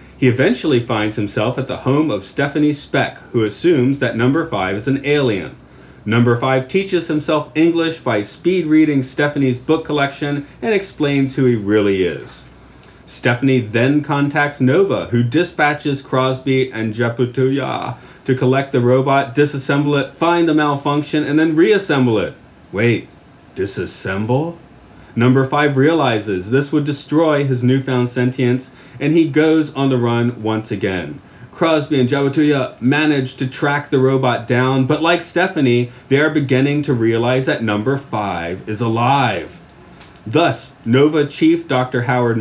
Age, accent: 30-49, American